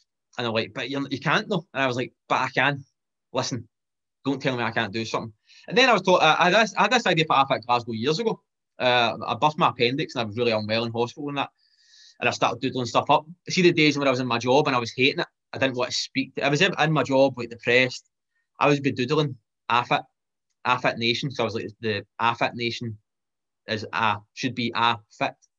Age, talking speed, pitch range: 20-39, 250 wpm, 120-160 Hz